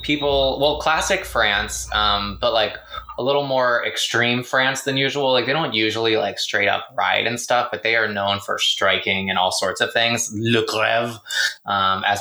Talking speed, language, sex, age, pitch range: 185 wpm, English, male, 20-39, 100-125 Hz